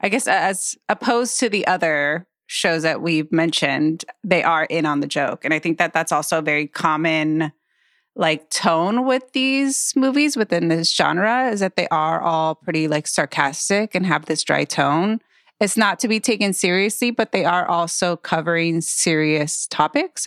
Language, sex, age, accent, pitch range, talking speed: English, female, 30-49, American, 155-210 Hz, 180 wpm